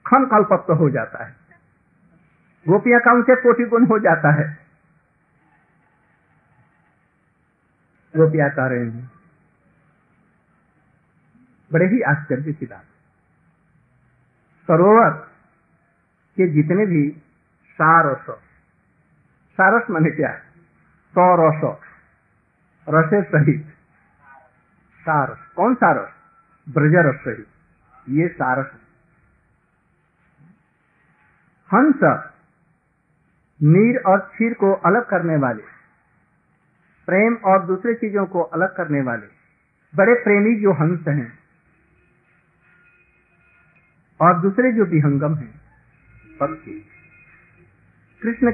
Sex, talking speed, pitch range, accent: male, 85 wpm, 150-205 Hz, native